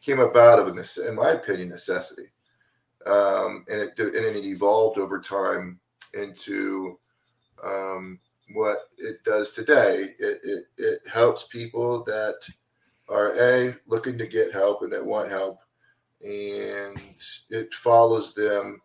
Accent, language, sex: American, English, male